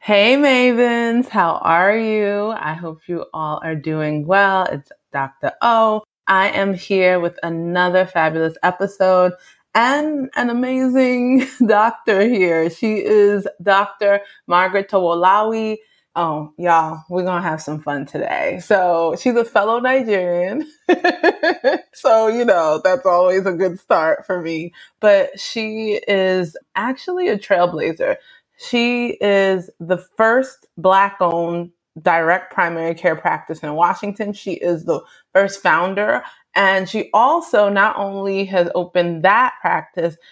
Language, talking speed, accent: English, 130 wpm, American